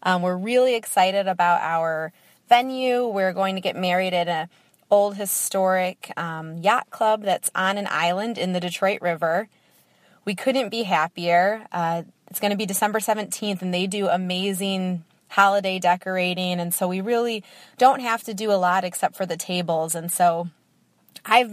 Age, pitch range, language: 20-39, 180-220 Hz, English